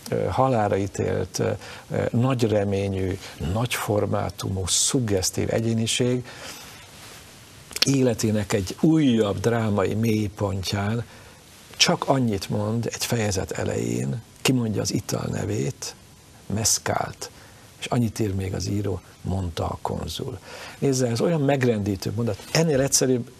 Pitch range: 100-125 Hz